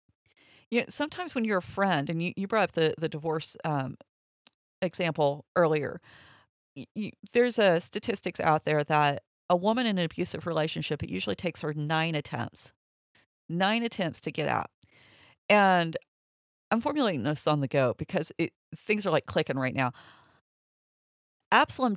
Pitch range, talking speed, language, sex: 150-205 Hz, 160 wpm, English, female